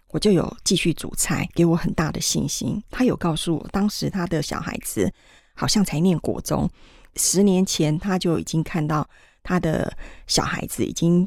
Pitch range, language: 165-195 Hz, Chinese